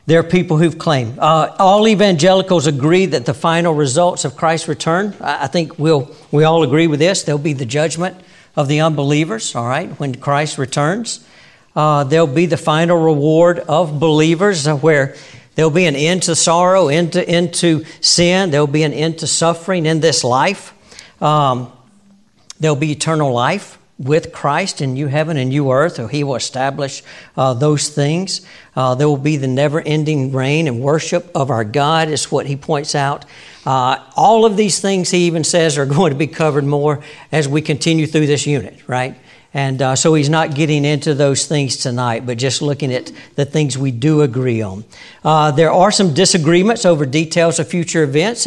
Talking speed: 185 wpm